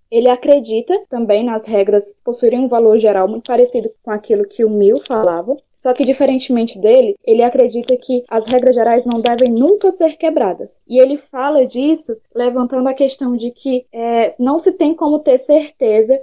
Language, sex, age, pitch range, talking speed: Portuguese, female, 10-29, 220-270 Hz, 175 wpm